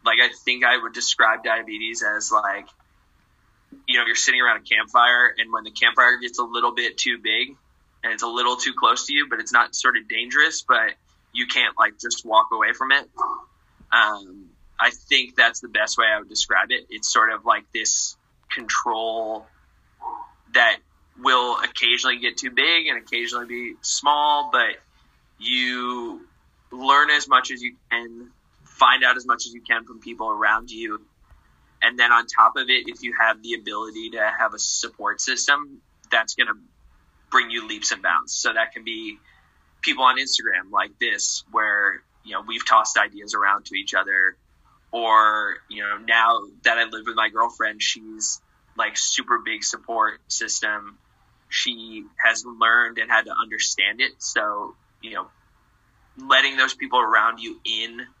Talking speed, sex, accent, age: 175 wpm, male, American, 20-39